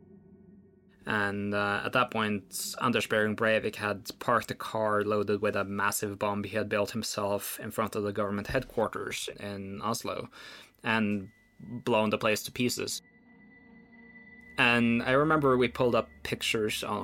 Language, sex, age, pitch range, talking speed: English, male, 20-39, 100-115 Hz, 150 wpm